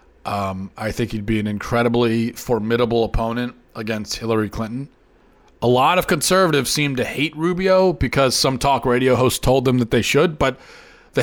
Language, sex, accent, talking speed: English, male, American, 170 wpm